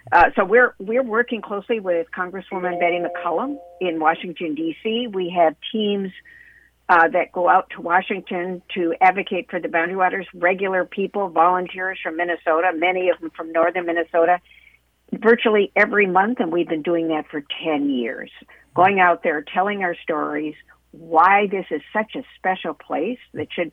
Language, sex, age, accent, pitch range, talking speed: English, female, 50-69, American, 165-200 Hz, 165 wpm